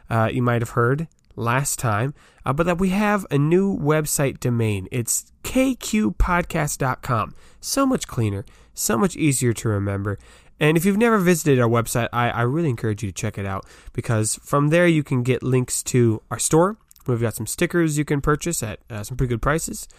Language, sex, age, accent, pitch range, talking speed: English, male, 20-39, American, 110-145 Hz, 195 wpm